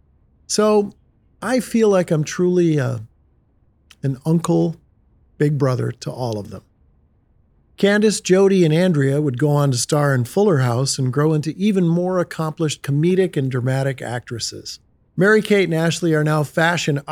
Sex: male